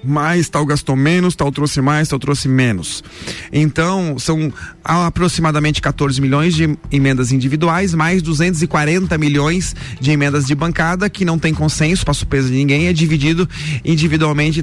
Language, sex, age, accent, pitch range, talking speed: Portuguese, male, 30-49, Brazilian, 135-170 Hz, 150 wpm